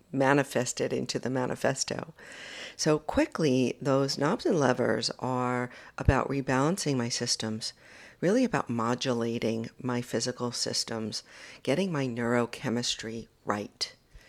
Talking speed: 105 wpm